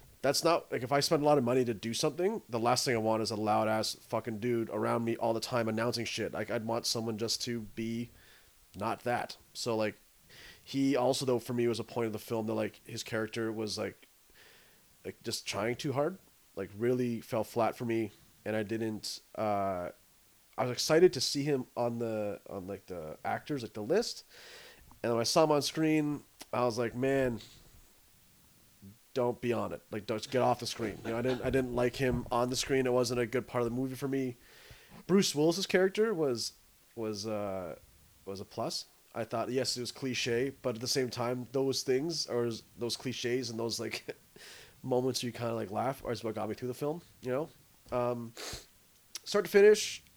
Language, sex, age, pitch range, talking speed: English, male, 30-49, 110-135 Hz, 215 wpm